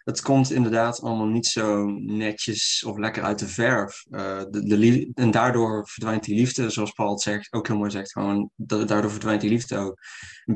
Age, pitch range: 20-39, 105-125 Hz